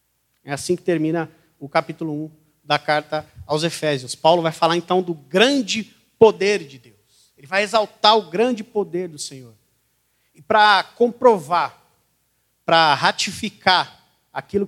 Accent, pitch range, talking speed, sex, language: Brazilian, 155-210 Hz, 140 wpm, male, Portuguese